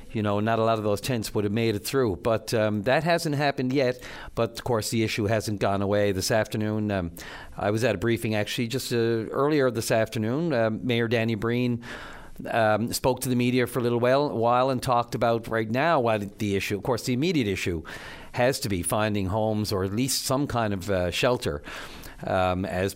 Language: English